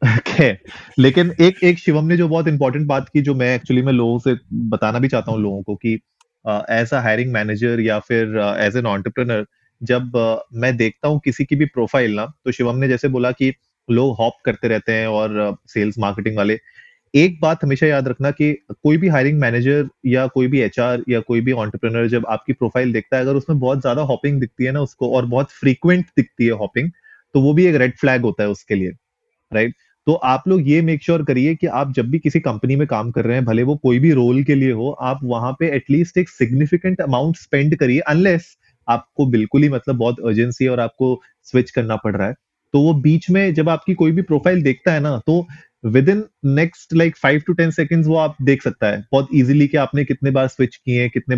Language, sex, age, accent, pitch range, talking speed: Hindi, male, 30-49, native, 120-150 Hz, 220 wpm